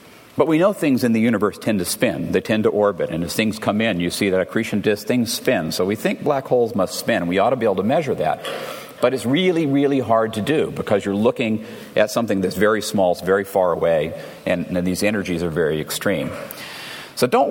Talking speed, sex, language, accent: 235 wpm, male, English, American